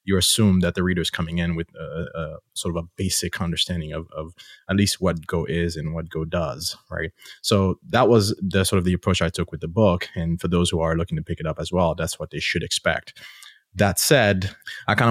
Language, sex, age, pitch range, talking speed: English, male, 20-39, 85-100 Hz, 245 wpm